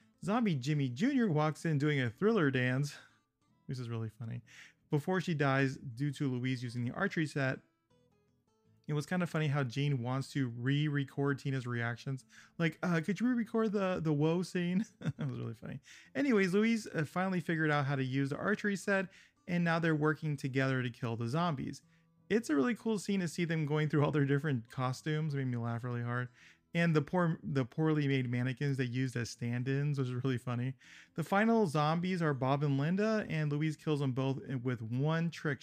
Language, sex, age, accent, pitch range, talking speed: English, male, 30-49, American, 135-175 Hz, 195 wpm